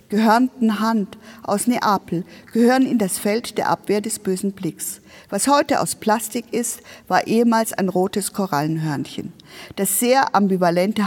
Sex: female